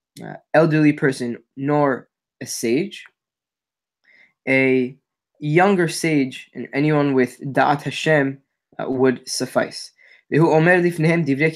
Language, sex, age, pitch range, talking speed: English, male, 10-29, 130-160 Hz, 90 wpm